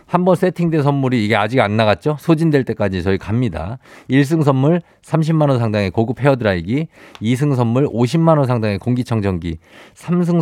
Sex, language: male, Korean